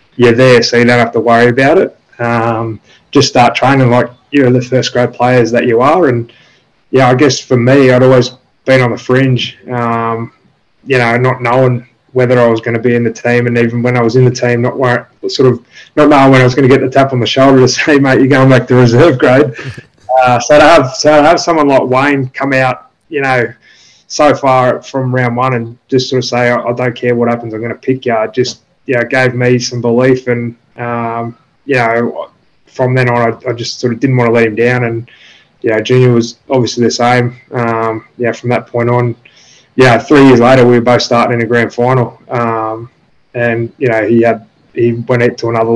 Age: 20-39